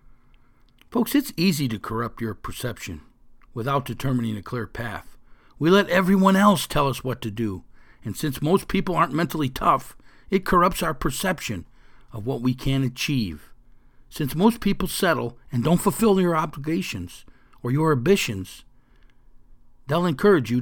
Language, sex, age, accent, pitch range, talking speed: English, male, 60-79, American, 115-165 Hz, 150 wpm